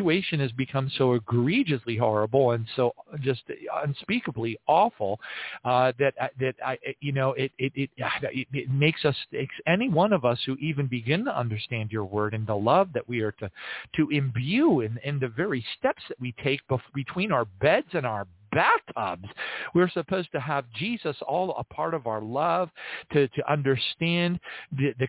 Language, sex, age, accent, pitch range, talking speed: English, male, 50-69, American, 125-170 Hz, 170 wpm